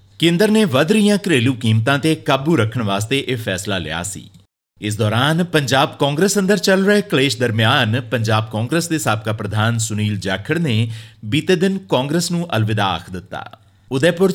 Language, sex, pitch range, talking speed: Punjabi, male, 110-165 Hz, 165 wpm